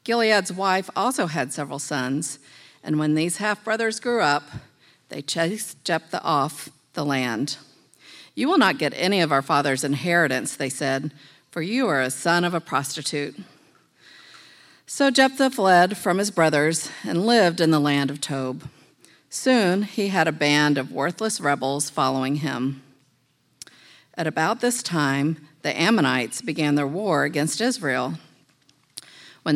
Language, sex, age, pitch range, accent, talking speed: English, female, 50-69, 140-205 Hz, American, 145 wpm